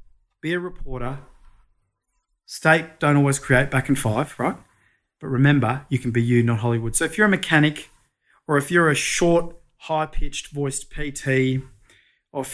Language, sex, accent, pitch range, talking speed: English, male, Australian, 130-155 Hz, 165 wpm